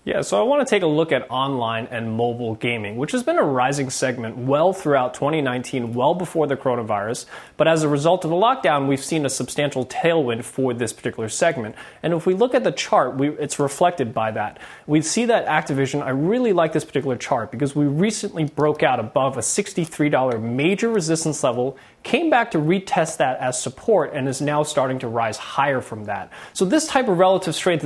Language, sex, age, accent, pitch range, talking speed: English, male, 20-39, American, 130-185 Hz, 205 wpm